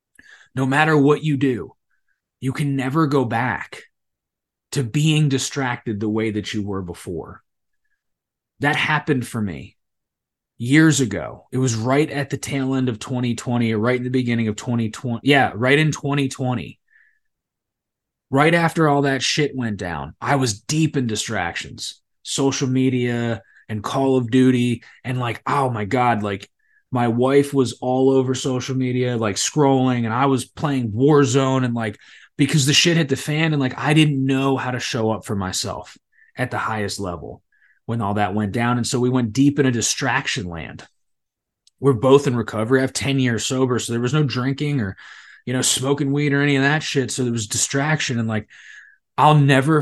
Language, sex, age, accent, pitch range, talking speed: English, male, 20-39, American, 115-140 Hz, 185 wpm